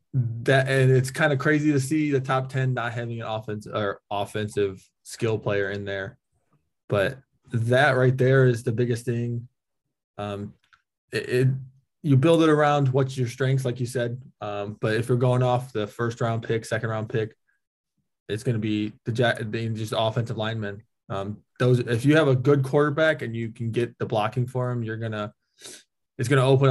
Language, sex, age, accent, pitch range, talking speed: English, male, 20-39, American, 105-130 Hz, 195 wpm